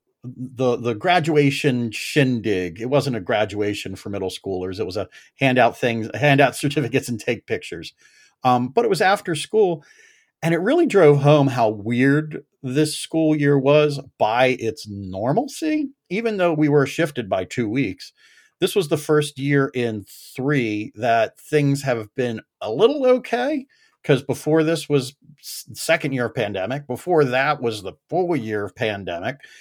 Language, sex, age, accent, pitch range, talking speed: English, male, 40-59, American, 120-155 Hz, 160 wpm